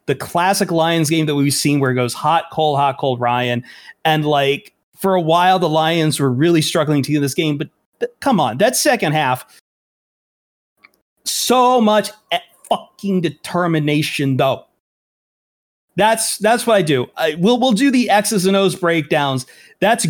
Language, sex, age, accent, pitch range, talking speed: English, male, 30-49, American, 135-185 Hz, 165 wpm